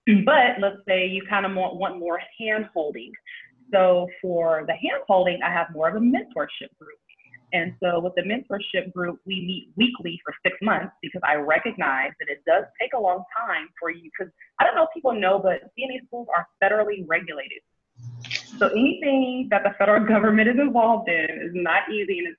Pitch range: 165-215 Hz